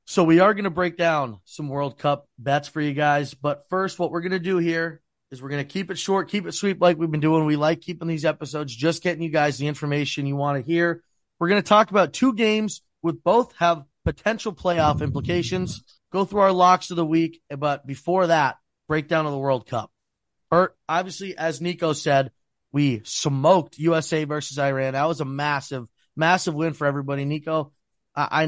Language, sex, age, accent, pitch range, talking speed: English, male, 30-49, American, 145-180 Hz, 205 wpm